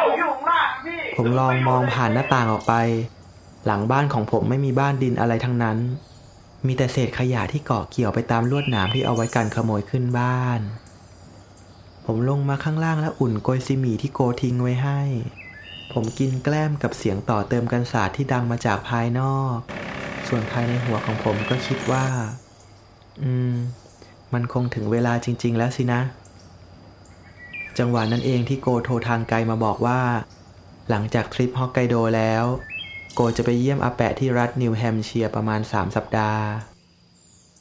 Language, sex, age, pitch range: Thai, male, 20-39, 105-125 Hz